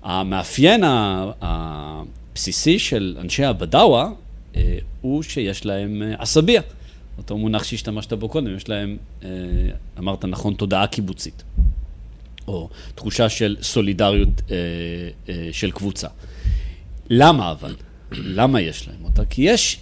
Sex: male